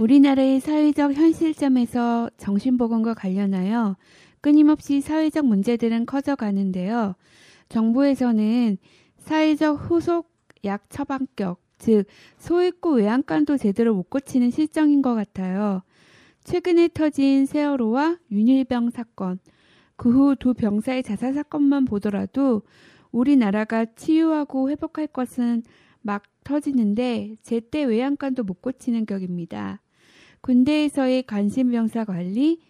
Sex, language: female, Korean